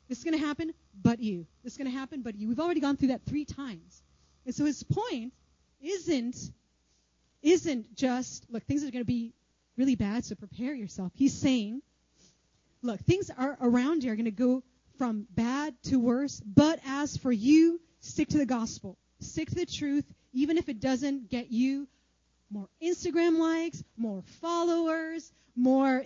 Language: English